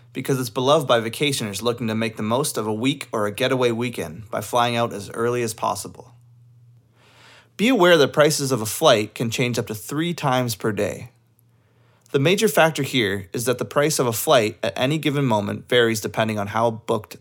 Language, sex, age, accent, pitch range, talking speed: English, male, 20-39, American, 110-130 Hz, 205 wpm